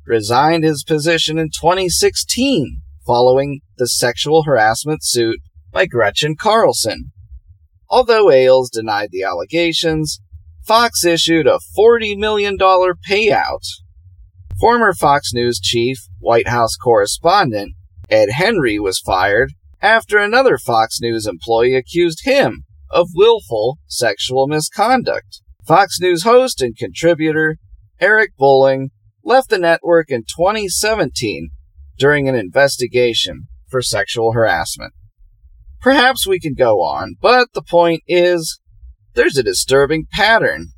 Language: English